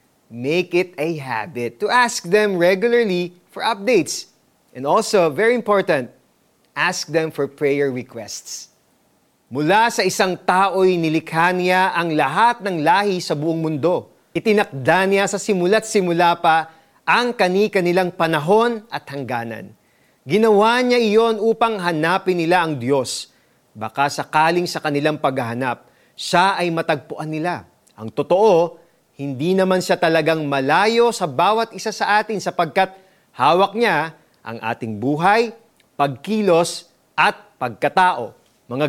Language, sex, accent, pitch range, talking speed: Filipino, male, native, 150-200 Hz, 125 wpm